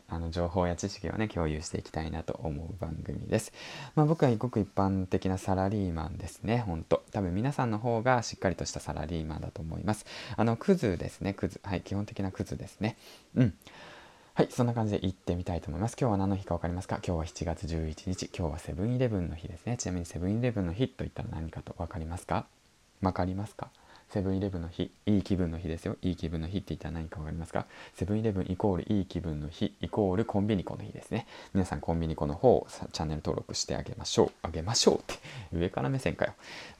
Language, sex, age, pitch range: Japanese, male, 20-39, 85-110 Hz